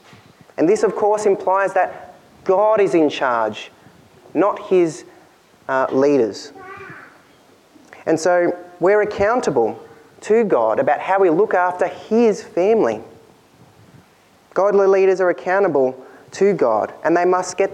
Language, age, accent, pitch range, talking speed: English, 30-49, Australian, 145-205 Hz, 125 wpm